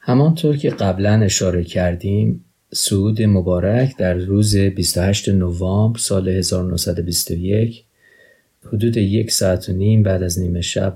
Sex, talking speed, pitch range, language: male, 120 wpm, 90-110 Hz, Persian